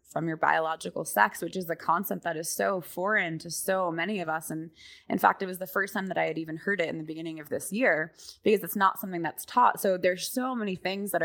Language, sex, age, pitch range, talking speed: English, female, 20-39, 160-185 Hz, 260 wpm